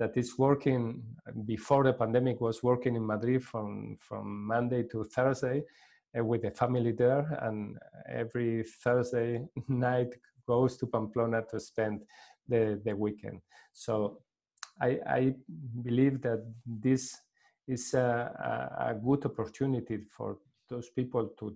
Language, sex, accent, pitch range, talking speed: English, male, Spanish, 115-130 Hz, 130 wpm